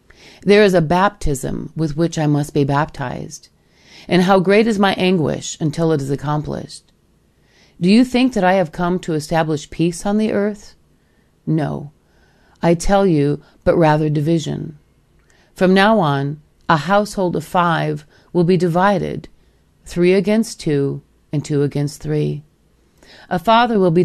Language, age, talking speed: English, 40-59, 150 wpm